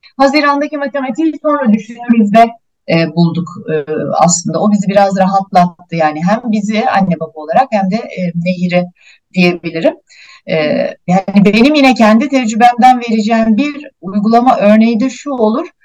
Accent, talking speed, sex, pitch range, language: native, 125 wpm, female, 180-235 Hz, Turkish